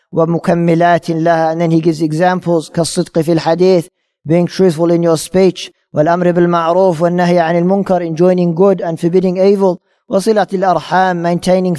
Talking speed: 145 wpm